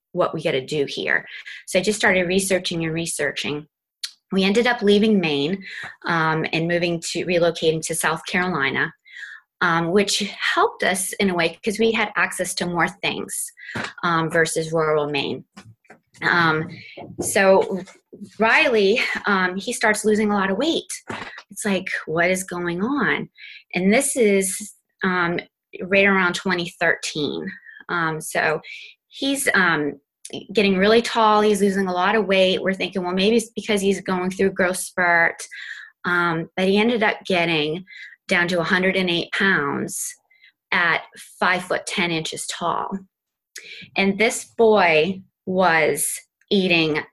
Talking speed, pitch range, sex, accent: 145 wpm, 165-205 Hz, female, American